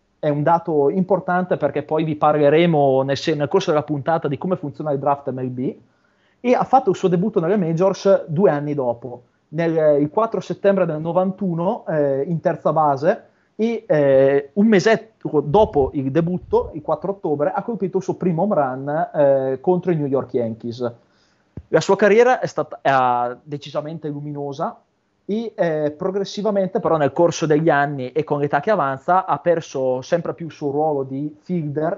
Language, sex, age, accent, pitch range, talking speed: Italian, male, 30-49, native, 140-185 Hz, 170 wpm